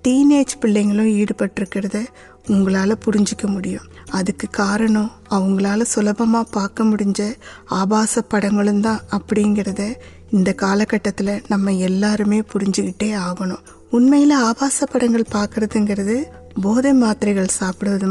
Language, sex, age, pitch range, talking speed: Tamil, female, 20-39, 195-225 Hz, 100 wpm